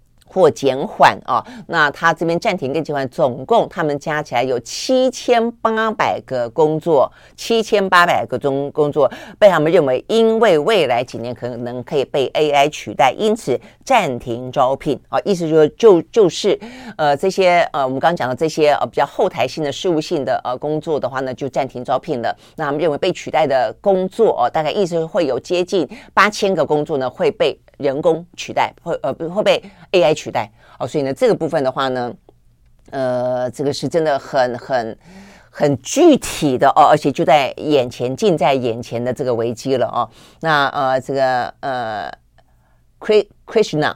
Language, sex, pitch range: Chinese, female, 130-185 Hz